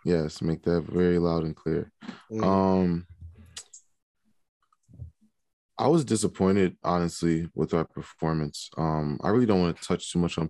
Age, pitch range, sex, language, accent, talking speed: 20-39, 80-90 Hz, male, English, American, 145 wpm